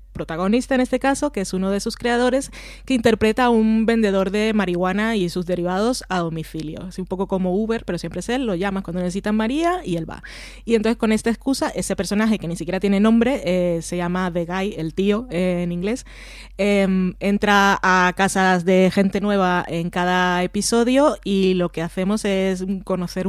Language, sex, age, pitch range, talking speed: Spanish, female, 20-39, 180-210 Hz, 200 wpm